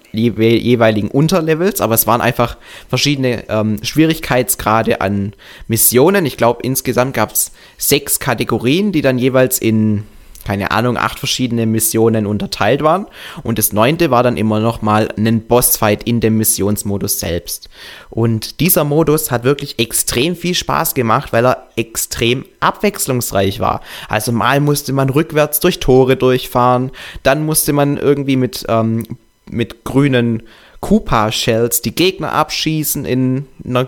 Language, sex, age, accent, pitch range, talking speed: German, male, 20-39, German, 110-140 Hz, 140 wpm